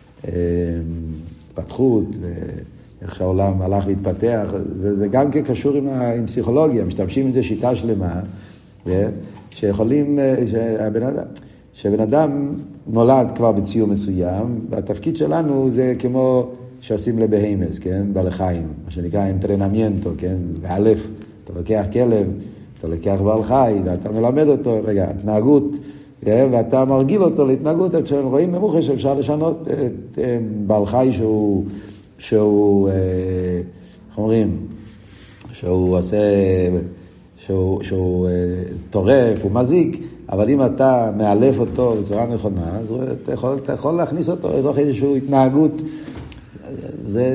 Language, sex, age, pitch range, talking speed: Hebrew, male, 50-69, 100-130 Hz, 125 wpm